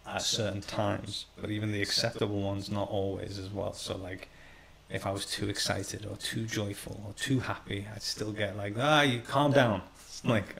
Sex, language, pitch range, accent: male, English, 100-110 Hz, British